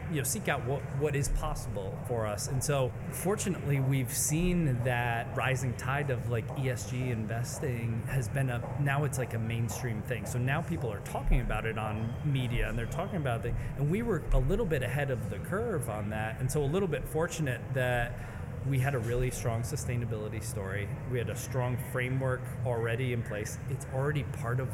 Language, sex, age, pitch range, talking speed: English, male, 30-49, 115-140 Hz, 200 wpm